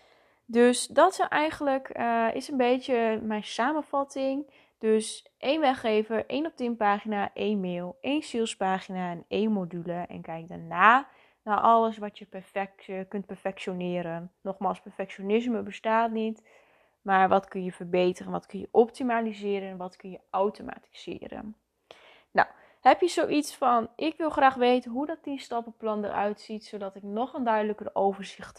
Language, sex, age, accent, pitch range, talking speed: Dutch, female, 20-39, Dutch, 195-255 Hz, 155 wpm